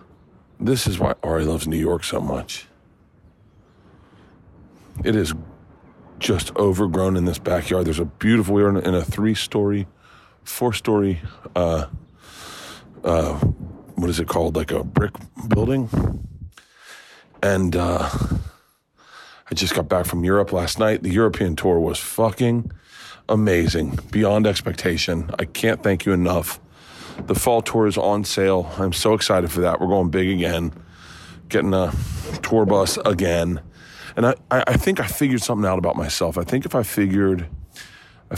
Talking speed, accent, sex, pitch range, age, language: 145 wpm, American, male, 90-110 Hz, 40-59, English